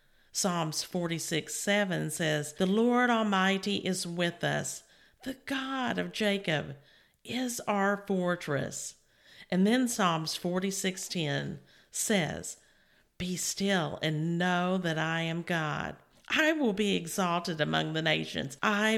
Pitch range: 165-220 Hz